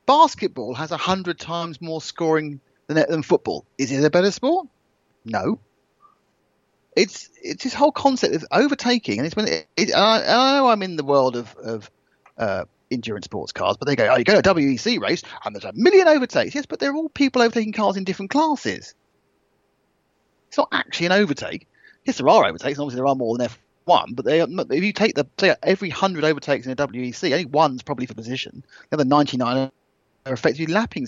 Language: English